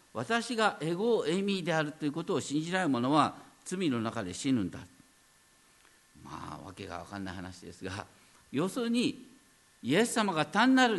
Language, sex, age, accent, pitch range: Japanese, male, 50-69, native, 130-205 Hz